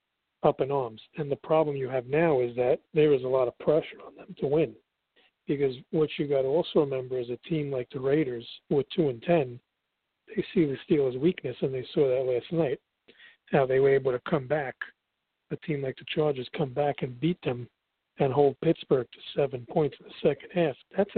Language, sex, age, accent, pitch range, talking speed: English, male, 50-69, American, 135-165 Hz, 220 wpm